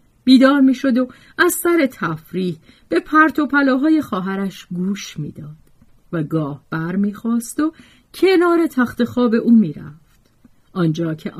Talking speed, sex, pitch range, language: 155 wpm, female, 165-245 Hz, Persian